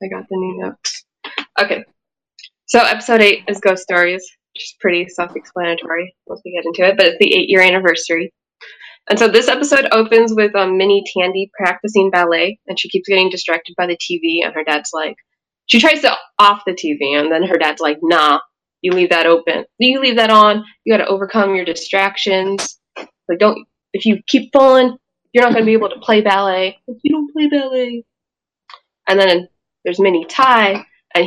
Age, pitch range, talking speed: 20-39, 175-225 Hz, 200 wpm